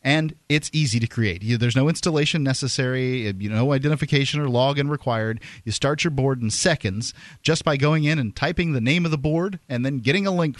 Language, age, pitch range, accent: English, 40-59, 105-155 Hz, American